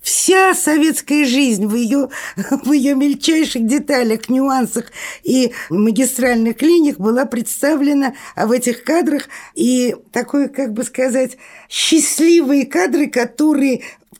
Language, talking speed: Russian, 120 wpm